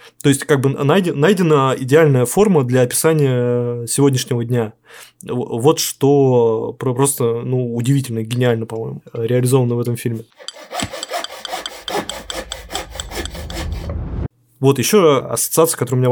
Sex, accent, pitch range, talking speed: male, native, 120-145 Hz, 105 wpm